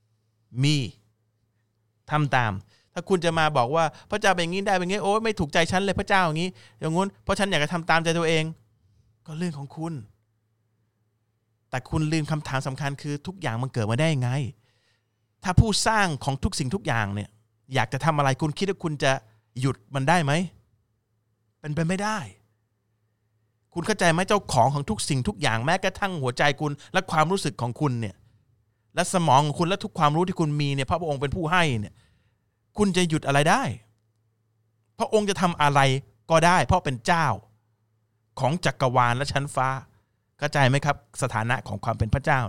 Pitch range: 110-165 Hz